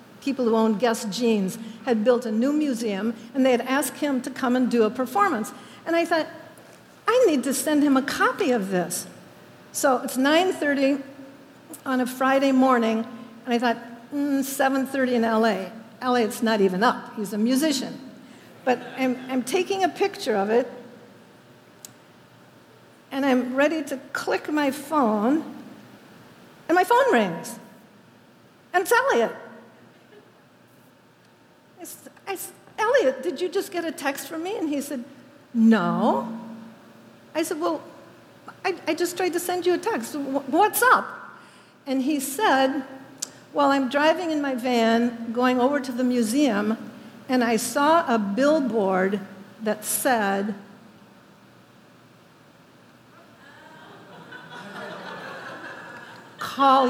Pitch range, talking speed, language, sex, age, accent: 230-295 Hz, 135 wpm, English, female, 60-79, American